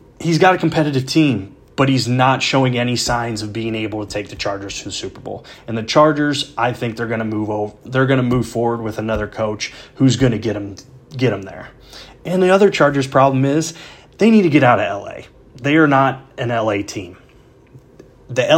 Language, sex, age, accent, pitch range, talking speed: English, male, 30-49, American, 115-135 Hz, 210 wpm